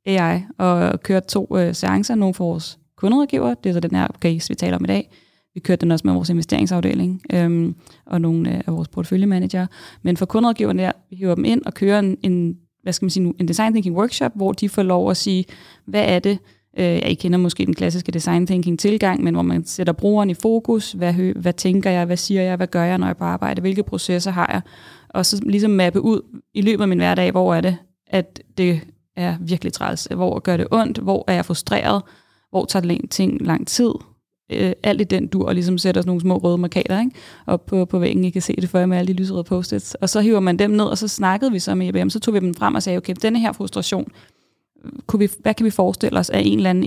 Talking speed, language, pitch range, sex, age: 245 wpm, Danish, 170-200 Hz, female, 20-39